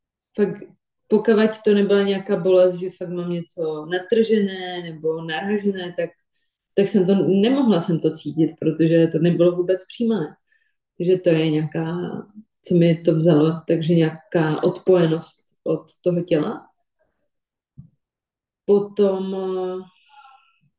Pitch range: 170-210 Hz